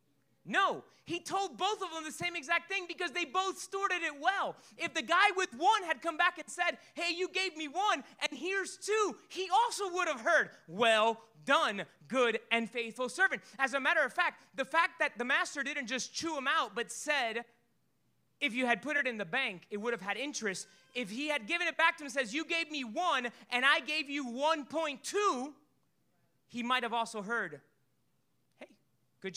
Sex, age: male, 30-49